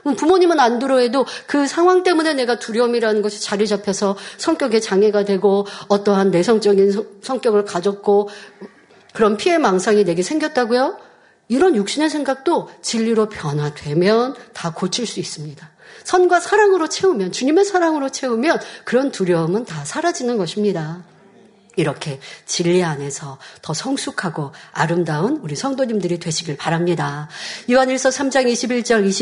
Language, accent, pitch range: Korean, native, 185-260 Hz